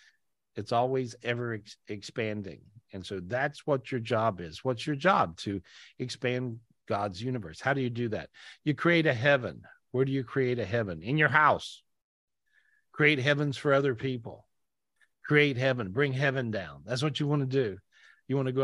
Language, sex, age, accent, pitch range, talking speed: English, male, 50-69, American, 110-135 Hz, 180 wpm